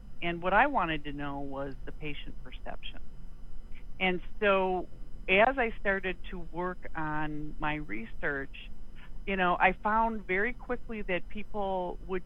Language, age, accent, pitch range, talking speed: English, 50-69, American, 145-185 Hz, 140 wpm